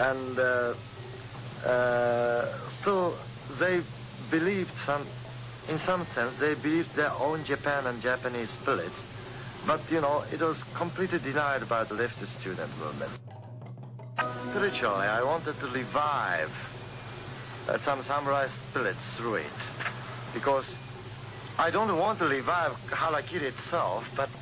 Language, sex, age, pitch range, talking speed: English, male, 60-79, 125-150 Hz, 125 wpm